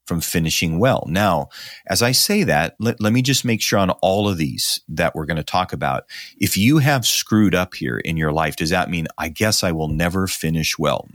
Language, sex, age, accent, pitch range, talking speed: English, male, 40-59, American, 85-110 Hz, 230 wpm